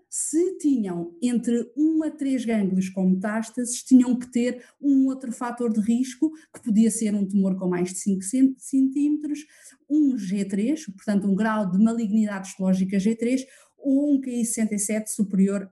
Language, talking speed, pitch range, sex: Portuguese, 155 wpm, 190-265 Hz, female